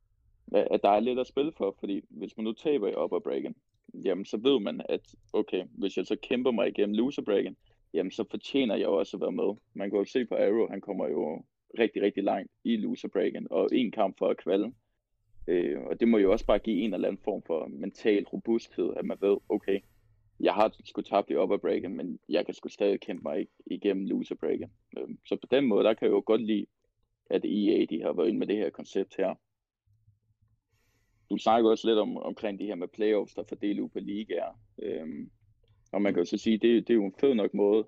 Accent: native